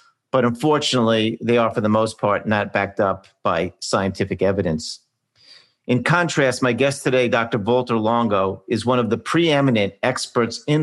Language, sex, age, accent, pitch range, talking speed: English, male, 50-69, American, 110-135 Hz, 160 wpm